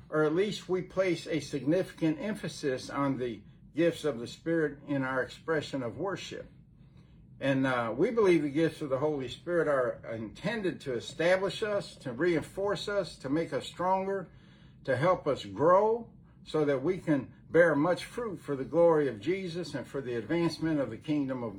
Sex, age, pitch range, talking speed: male, 60-79, 140-170 Hz, 180 wpm